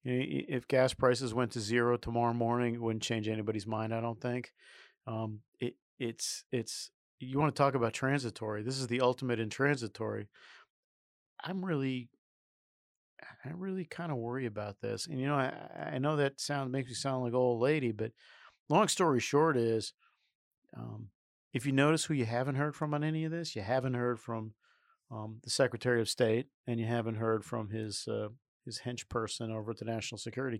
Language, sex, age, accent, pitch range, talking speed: English, male, 40-59, American, 110-140 Hz, 190 wpm